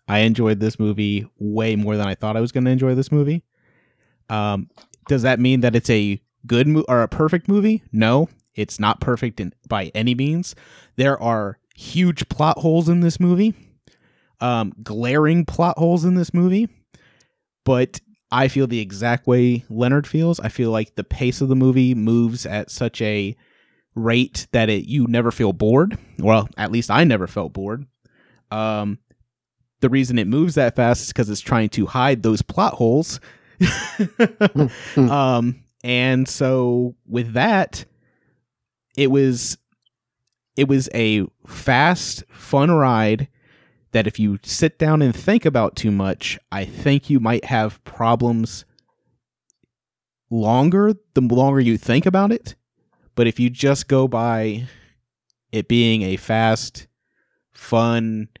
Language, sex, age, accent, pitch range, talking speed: English, male, 30-49, American, 110-140 Hz, 150 wpm